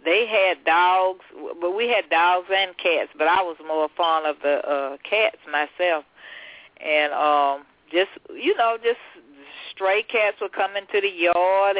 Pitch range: 155-195 Hz